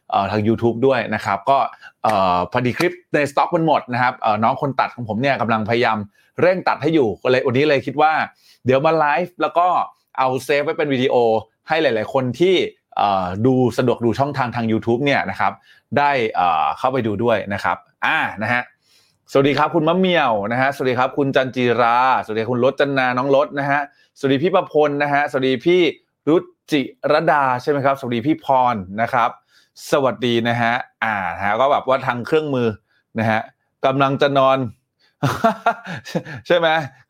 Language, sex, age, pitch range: Thai, male, 20-39, 115-145 Hz